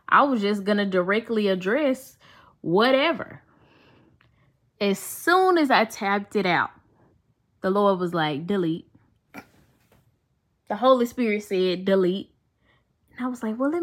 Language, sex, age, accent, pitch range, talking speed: English, female, 10-29, American, 175-255 Hz, 135 wpm